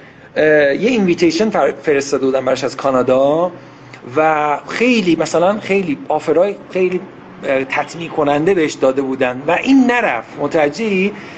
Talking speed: 120 wpm